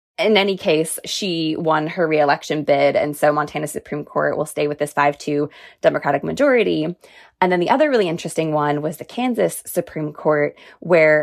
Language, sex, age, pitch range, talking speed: English, female, 20-39, 150-200 Hz, 175 wpm